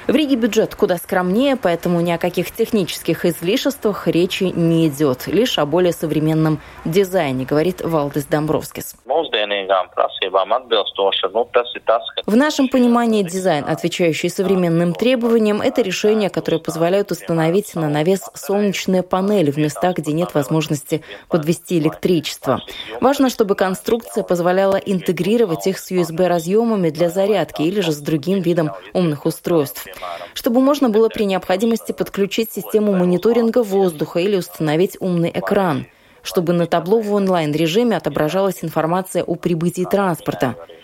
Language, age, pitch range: Russian, 20-39, 165-205 Hz